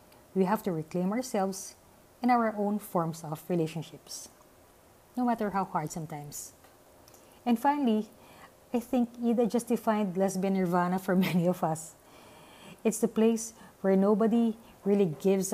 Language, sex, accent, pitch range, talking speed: English, female, Filipino, 175-230 Hz, 140 wpm